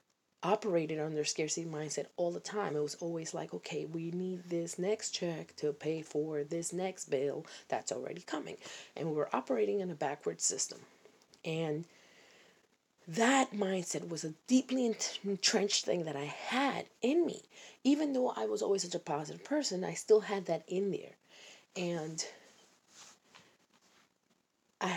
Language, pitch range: English, 160-215 Hz